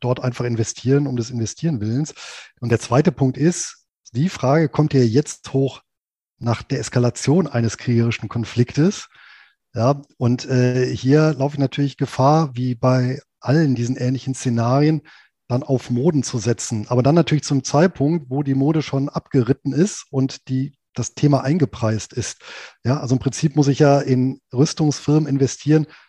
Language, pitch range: German, 130-160 Hz